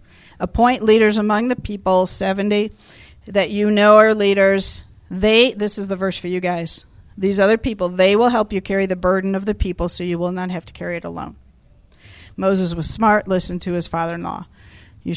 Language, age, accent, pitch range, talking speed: English, 50-69, American, 185-235 Hz, 195 wpm